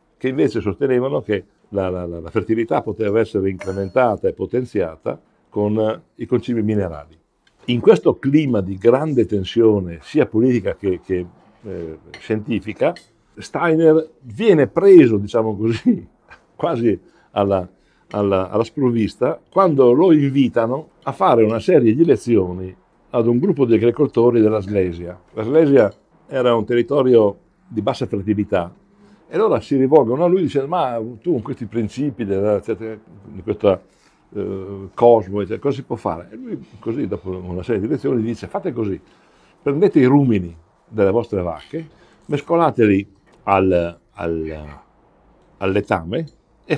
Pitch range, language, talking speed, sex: 95-130 Hz, English, 135 wpm, male